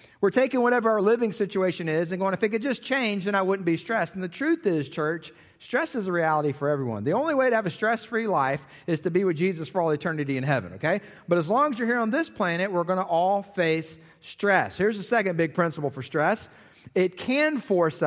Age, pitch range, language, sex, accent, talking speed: 30-49, 140-185 Hz, English, male, American, 245 wpm